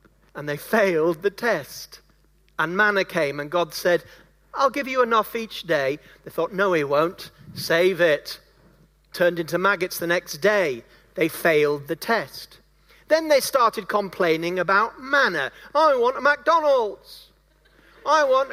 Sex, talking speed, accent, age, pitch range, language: male, 150 wpm, British, 40-59, 180-270 Hz, English